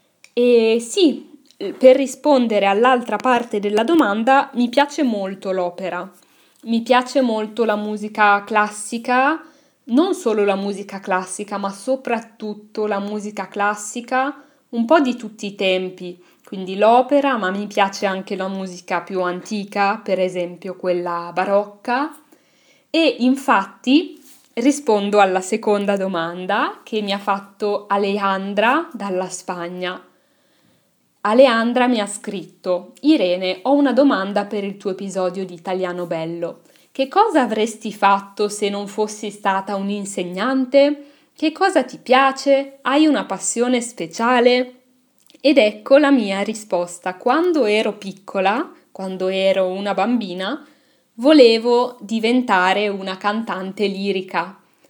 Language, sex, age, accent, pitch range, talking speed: Italian, female, 20-39, native, 195-260 Hz, 120 wpm